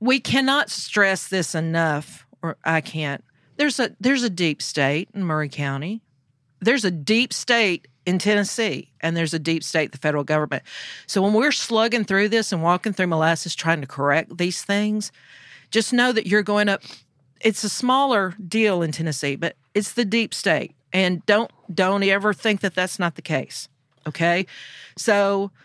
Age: 50-69